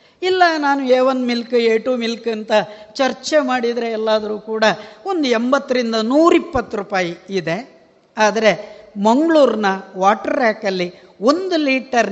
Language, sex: Kannada, female